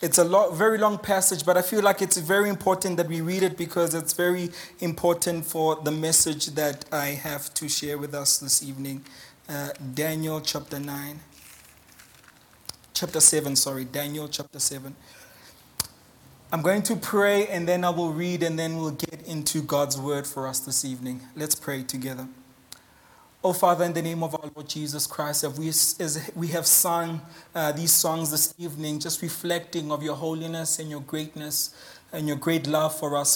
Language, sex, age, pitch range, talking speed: English, male, 20-39, 150-175 Hz, 180 wpm